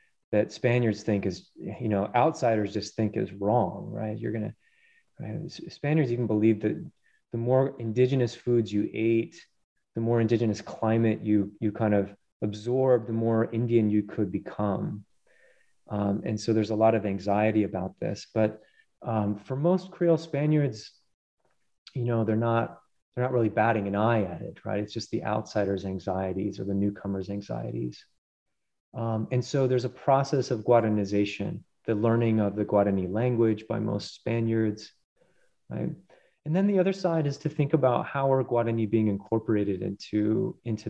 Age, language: 30-49, English